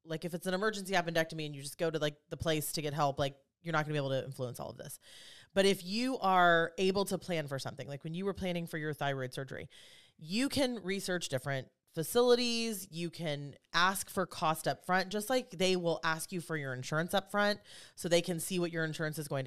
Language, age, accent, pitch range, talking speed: English, 30-49, American, 155-195 Hz, 245 wpm